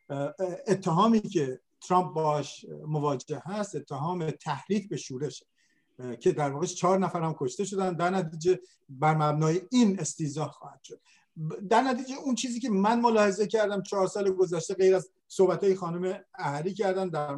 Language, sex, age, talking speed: Persian, male, 50-69, 150 wpm